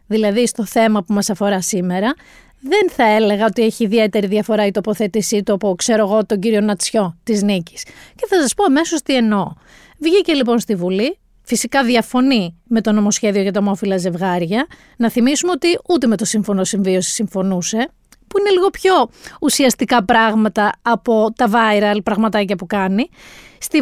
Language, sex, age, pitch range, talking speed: Greek, female, 30-49, 215-295 Hz, 170 wpm